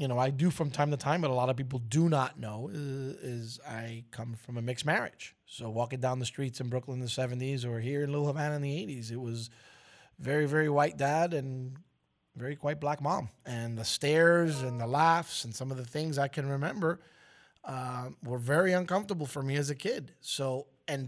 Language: English